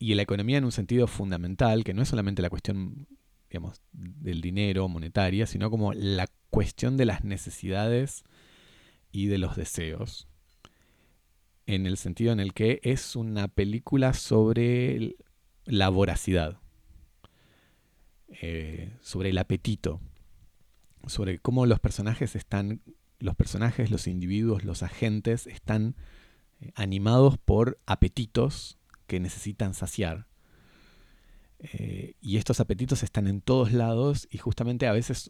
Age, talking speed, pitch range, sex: 30-49, 125 wpm, 90-115 Hz, male